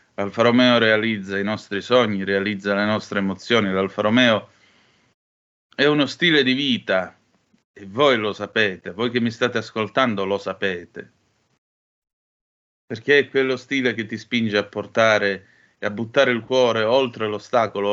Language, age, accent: Italian, 30-49, native